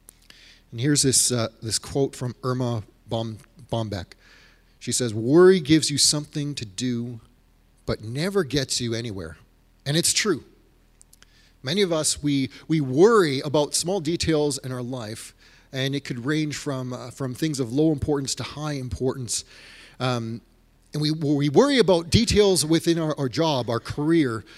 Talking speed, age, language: 160 wpm, 30-49, English